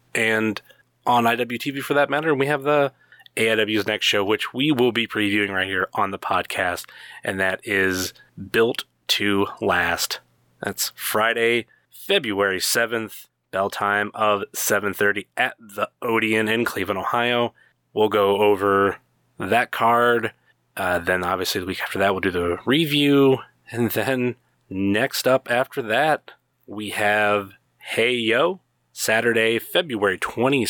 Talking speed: 140 wpm